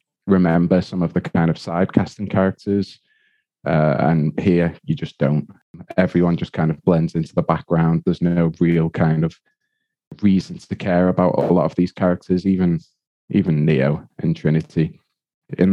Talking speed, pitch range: 165 wpm, 80-90 Hz